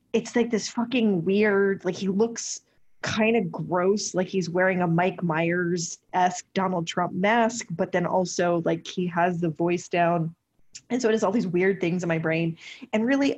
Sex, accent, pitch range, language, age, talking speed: female, American, 175-230 Hz, English, 20-39, 190 wpm